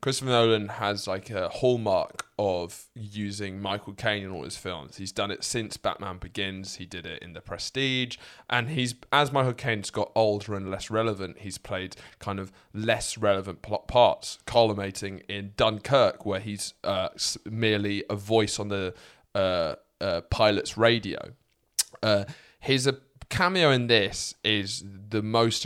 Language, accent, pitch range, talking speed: English, British, 95-120 Hz, 155 wpm